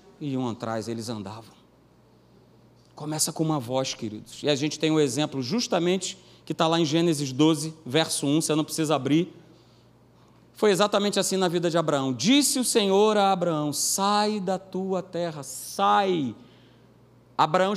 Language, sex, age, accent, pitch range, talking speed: Portuguese, male, 40-59, Brazilian, 155-195 Hz, 160 wpm